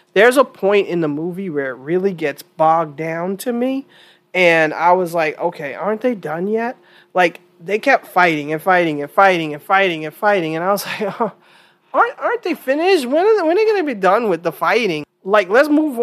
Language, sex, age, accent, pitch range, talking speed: English, male, 30-49, American, 160-200 Hz, 220 wpm